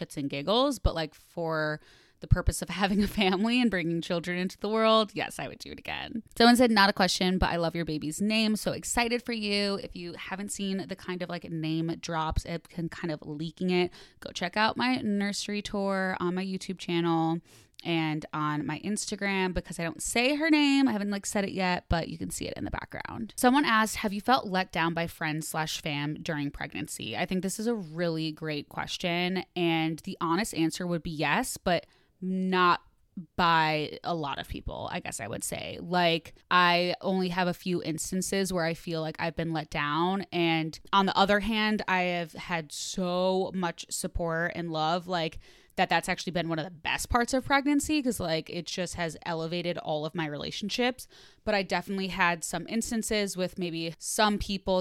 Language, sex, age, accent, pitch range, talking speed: English, female, 20-39, American, 165-200 Hz, 205 wpm